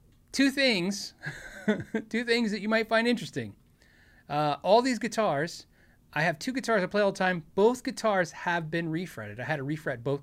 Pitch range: 130-190 Hz